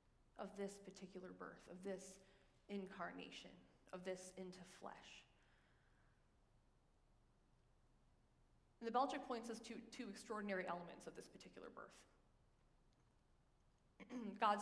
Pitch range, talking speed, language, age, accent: 195-250 Hz, 105 wpm, English, 20-39, American